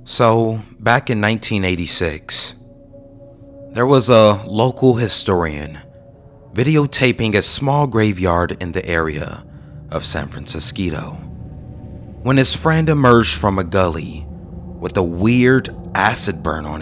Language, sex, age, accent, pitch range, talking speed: English, male, 30-49, American, 95-125 Hz, 115 wpm